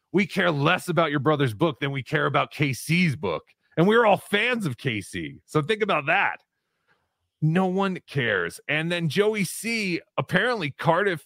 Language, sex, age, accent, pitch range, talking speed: English, male, 30-49, American, 140-200 Hz, 170 wpm